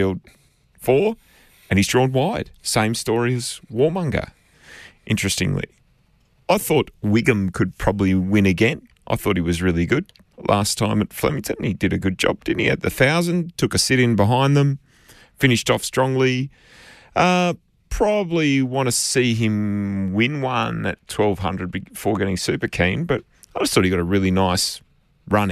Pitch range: 95-115 Hz